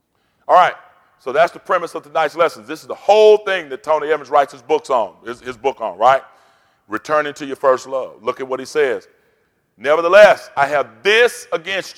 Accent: American